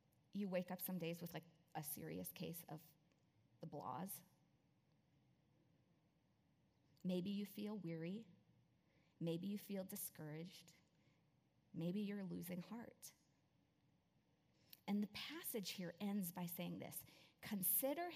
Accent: American